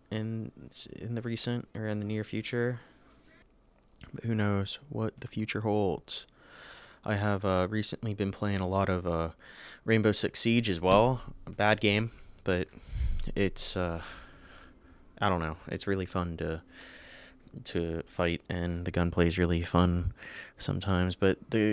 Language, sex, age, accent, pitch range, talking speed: English, male, 20-39, American, 90-105 Hz, 150 wpm